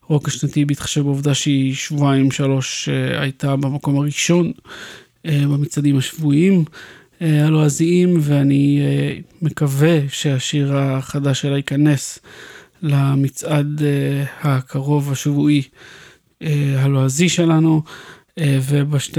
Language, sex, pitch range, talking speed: Hebrew, male, 140-160 Hz, 80 wpm